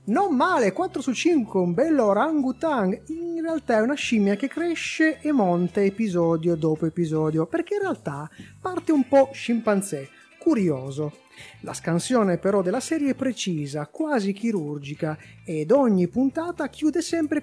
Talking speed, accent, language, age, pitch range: 150 wpm, native, Italian, 30-49, 175-280 Hz